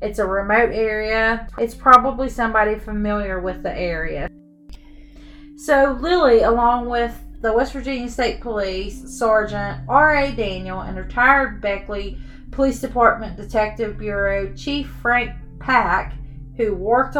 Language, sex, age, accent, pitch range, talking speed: English, female, 30-49, American, 185-235 Hz, 120 wpm